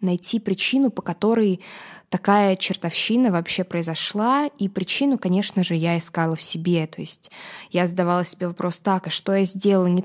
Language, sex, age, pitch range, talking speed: Russian, female, 20-39, 175-200 Hz, 160 wpm